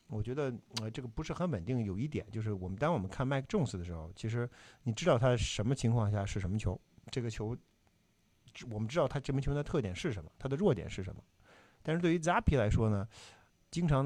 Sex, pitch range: male, 110-145 Hz